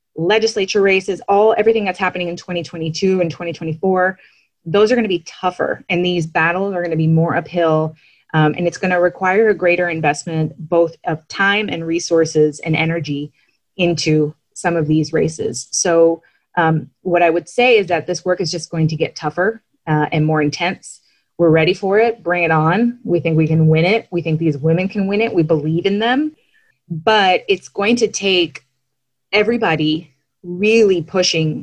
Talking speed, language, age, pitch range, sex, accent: 185 wpm, English, 20-39, 160-195 Hz, female, American